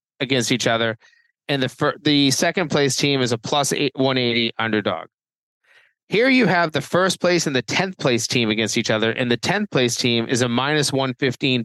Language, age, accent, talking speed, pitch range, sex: English, 30-49, American, 210 wpm, 120-165 Hz, male